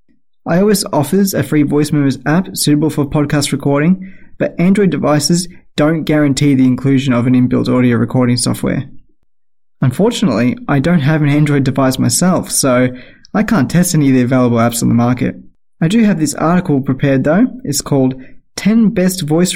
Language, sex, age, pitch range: English, male, 20-39, 130-170 Hz